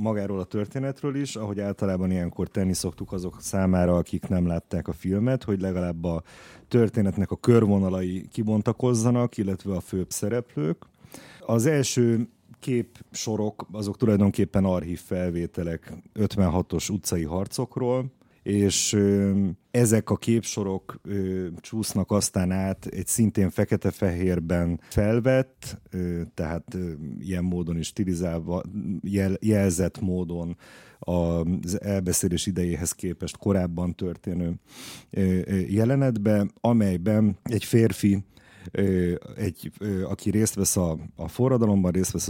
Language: Hungarian